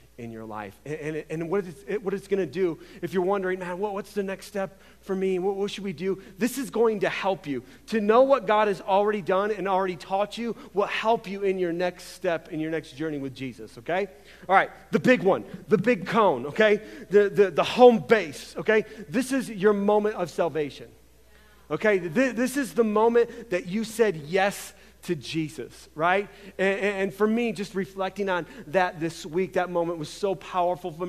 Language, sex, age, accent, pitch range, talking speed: English, male, 40-59, American, 180-215 Hz, 210 wpm